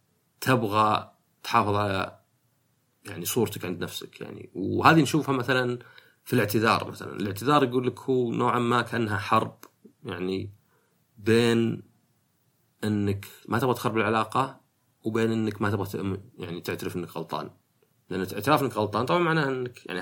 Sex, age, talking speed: male, 30-49, 135 wpm